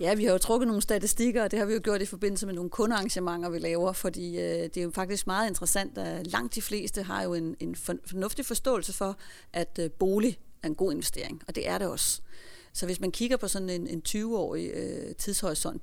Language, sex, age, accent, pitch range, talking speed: Danish, female, 30-49, native, 175-200 Hz, 235 wpm